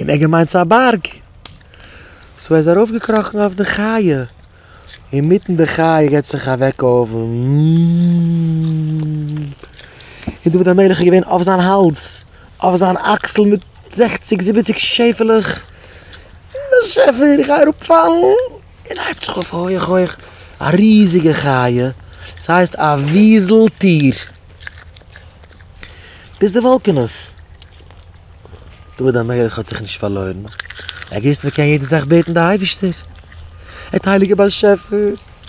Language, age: English, 30-49